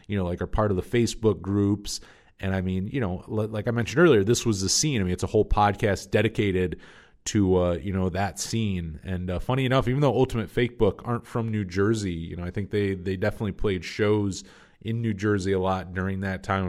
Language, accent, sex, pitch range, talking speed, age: English, American, male, 90-110 Hz, 230 wpm, 30-49